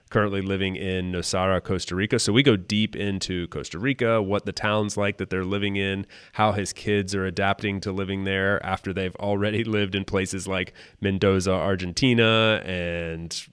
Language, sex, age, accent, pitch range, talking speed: English, male, 30-49, American, 95-105 Hz, 175 wpm